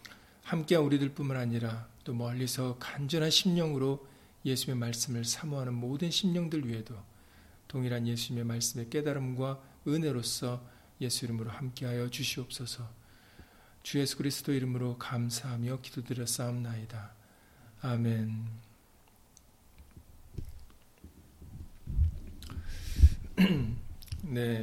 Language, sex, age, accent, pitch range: Korean, male, 50-69, native, 115-140 Hz